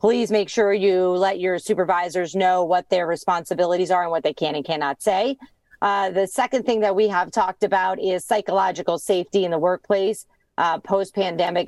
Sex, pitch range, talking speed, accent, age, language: female, 180-225 Hz, 185 wpm, American, 40-59, English